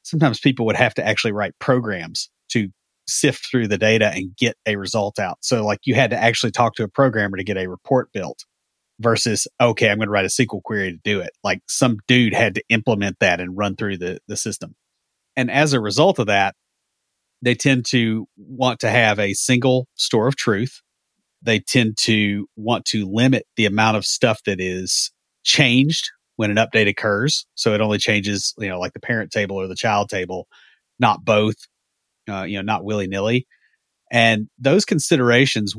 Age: 30-49